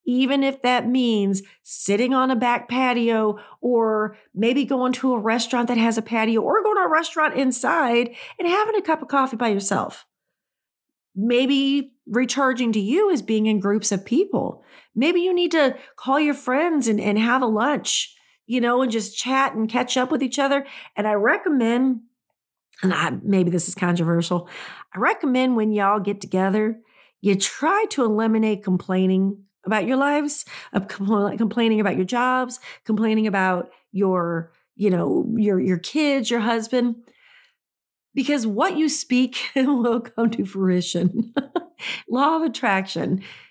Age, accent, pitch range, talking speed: 40-59, American, 210-295 Hz, 155 wpm